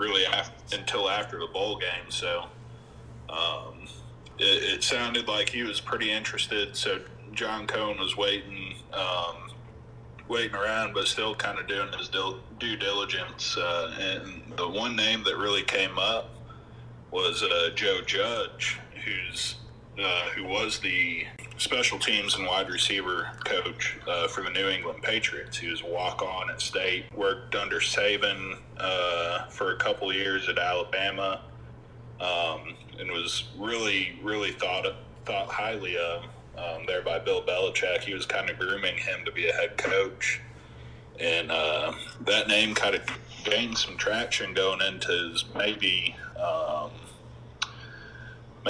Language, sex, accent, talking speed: English, male, American, 145 wpm